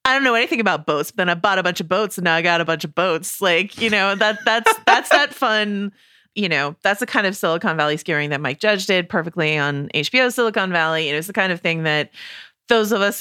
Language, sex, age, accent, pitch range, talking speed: English, female, 30-49, American, 160-220 Hz, 265 wpm